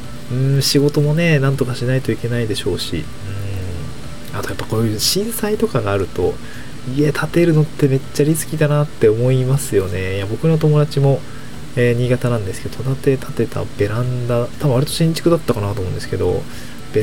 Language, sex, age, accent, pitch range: Japanese, male, 20-39, native, 110-140 Hz